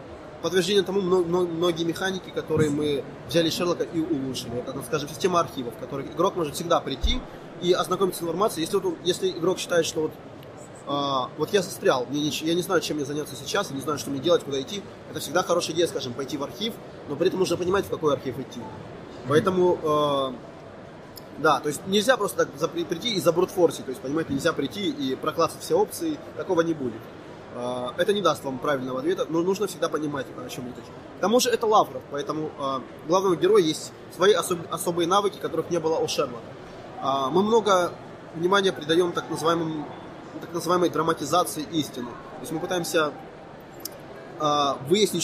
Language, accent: Ukrainian, native